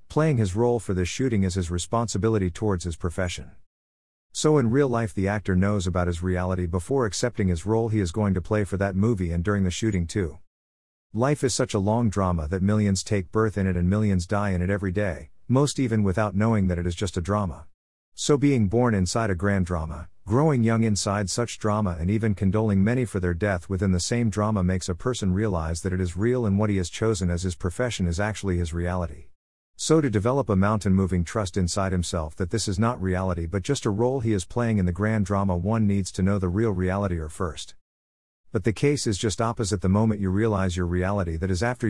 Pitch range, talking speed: 90-110 Hz, 230 wpm